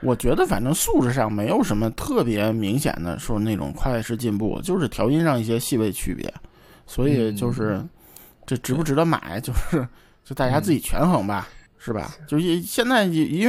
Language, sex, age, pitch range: Chinese, male, 20-39, 120-155 Hz